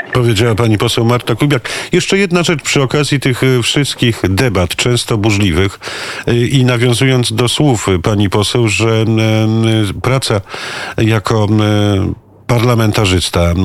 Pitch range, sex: 100-115 Hz, male